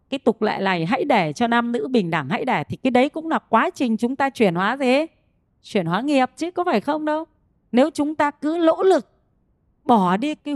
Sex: female